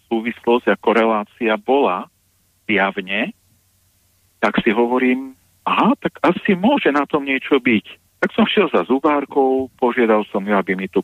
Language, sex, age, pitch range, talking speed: Slovak, male, 50-69, 95-120 Hz, 145 wpm